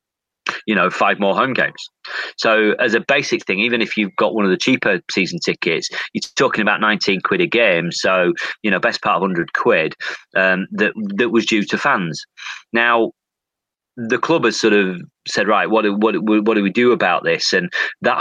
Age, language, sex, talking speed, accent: 30-49, English, male, 200 wpm, British